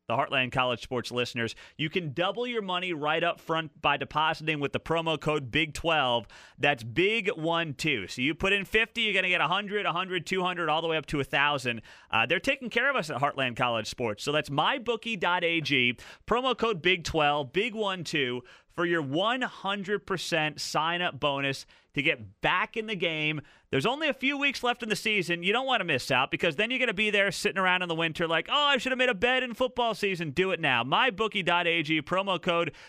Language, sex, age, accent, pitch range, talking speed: English, male, 30-49, American, 145-195 Hz, 200 wpm